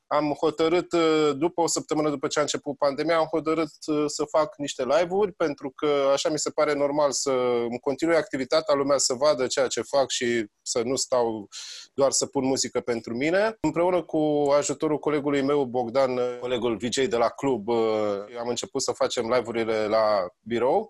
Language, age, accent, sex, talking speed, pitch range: Romanian, 20-39, native, male, 170 wpm, 140-195 Hz